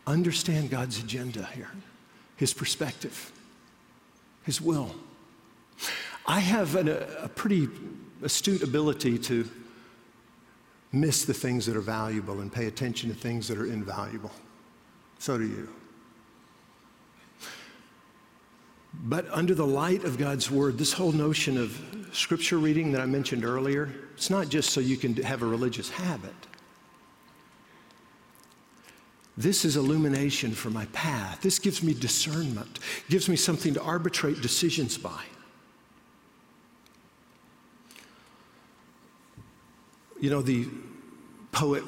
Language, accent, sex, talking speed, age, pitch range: English, American, male, 115 wpm, 50-69, 115-160 Hz